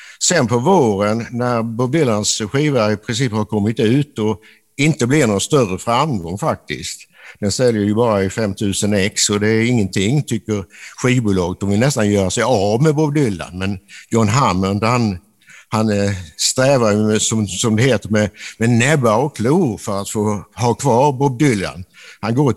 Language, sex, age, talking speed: Swedish, male, 60-79, 175 wpm